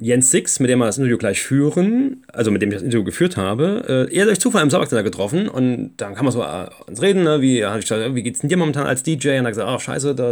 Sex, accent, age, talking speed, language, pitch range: male, German, 30-49, 275 wpm, German, 125-160 Hz